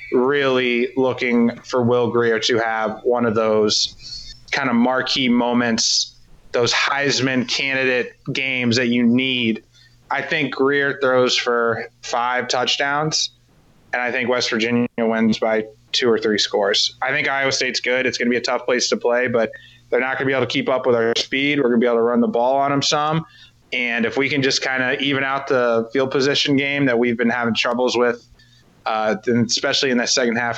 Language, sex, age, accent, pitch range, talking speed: English, male, 20-39, American, 115-135 Hz, 205 wpm